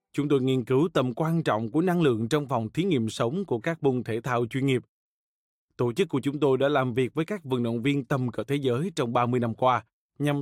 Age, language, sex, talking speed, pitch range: 20-39, Vietnamese, male, 255 wpm, 120-150 Hz